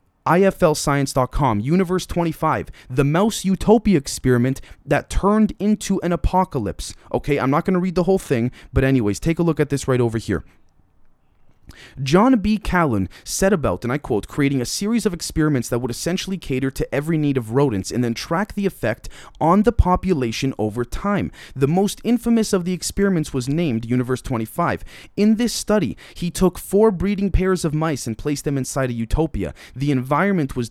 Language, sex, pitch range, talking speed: English, male, 115-170 Hz, 180 wpm